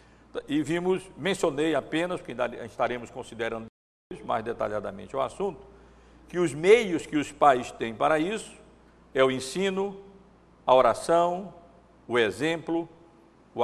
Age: 60-79